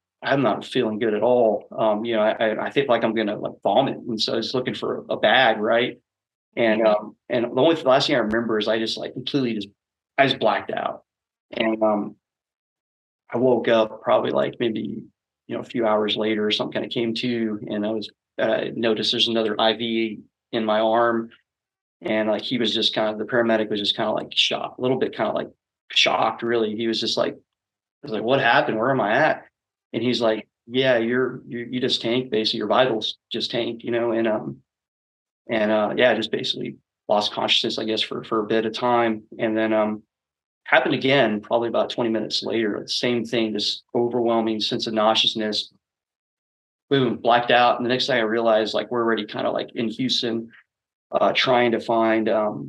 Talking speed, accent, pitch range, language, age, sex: 210 wpm, American, 110-120 Hz, English, 30-49, male